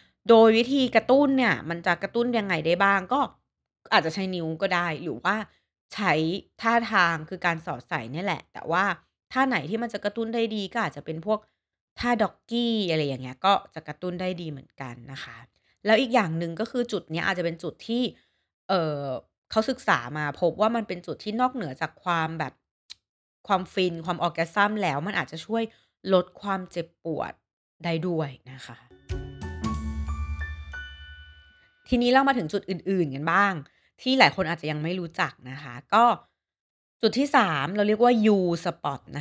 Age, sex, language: 20-39, female, Thai